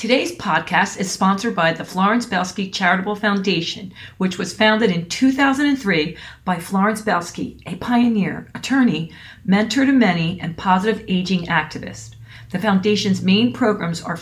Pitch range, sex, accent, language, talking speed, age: 170-215 Hz, female, American, English, 140 wpm, 40-59